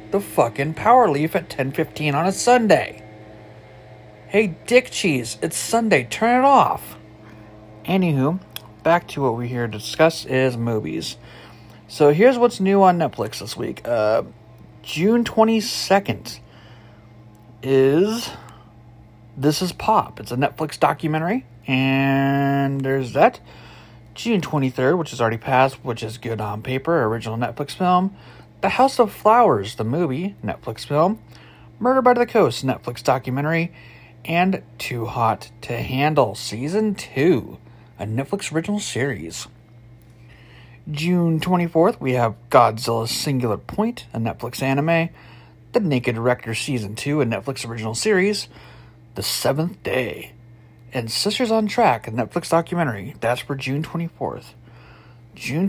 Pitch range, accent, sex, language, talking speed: 115-175 Hz, American, male, English, 130 wpm